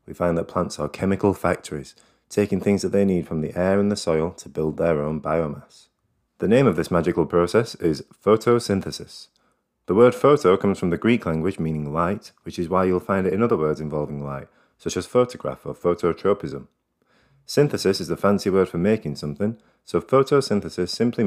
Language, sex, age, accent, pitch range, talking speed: English, male, 30-49, British, 80-110 Hz, 190 wpm